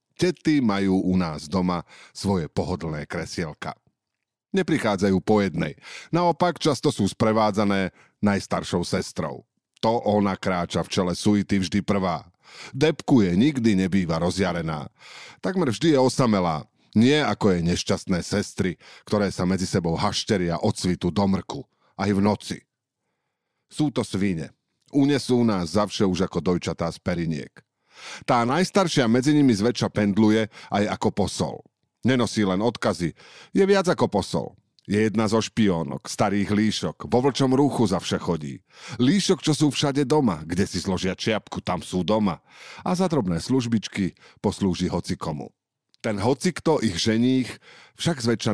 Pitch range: 90-125 Hz